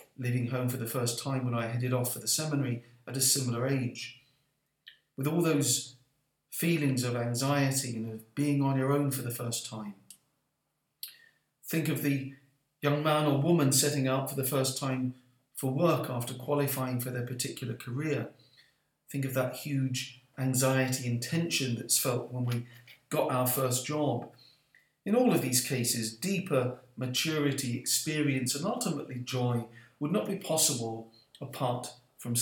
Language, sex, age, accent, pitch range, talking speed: English, male, 40-59, British, 125-145 Hz, 160 wpm